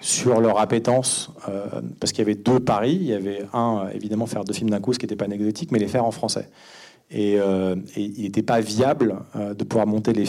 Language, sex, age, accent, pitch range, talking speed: French, male, 40-59, French, 105-125 Hz, 245 wpm